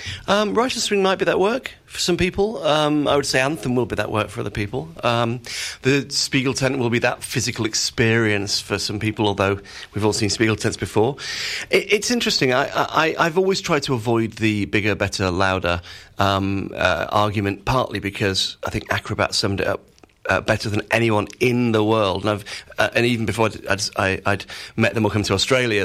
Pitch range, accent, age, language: 100-125 Hz, British, 40-59, English